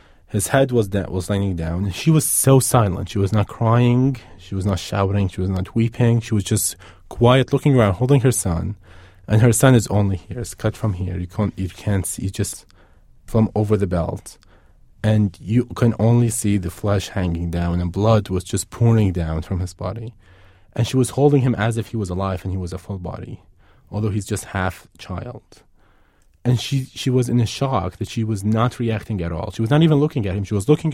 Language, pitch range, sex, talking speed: English, 95-120 Hz, male, 225 wpm